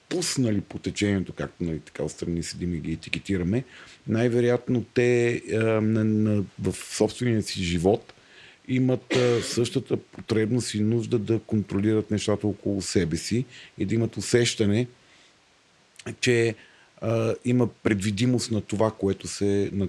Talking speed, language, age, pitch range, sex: 140 wpm, Bulgarian, 50-69, 95-120 Hz, male